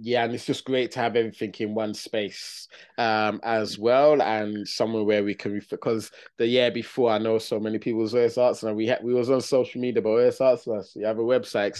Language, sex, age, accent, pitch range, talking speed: English, male, 20-39, British, 110-130 Hz, 230 wpm